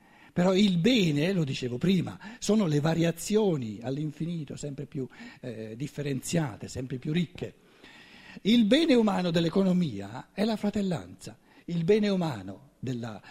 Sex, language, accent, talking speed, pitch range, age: male, Italian, native, 125 wpm, 140-205 Hz, 60-79